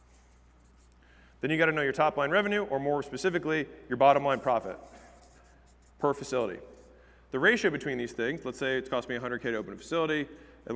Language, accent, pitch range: English, American, 105-150 Hz